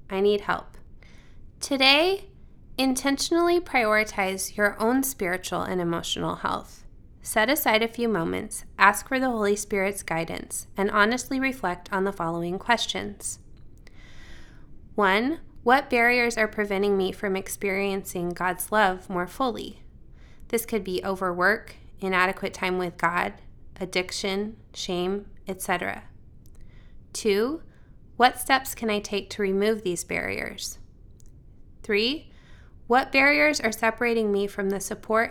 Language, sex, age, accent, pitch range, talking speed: English, female, 20-39, American, 190-230 Hz, 120 wpm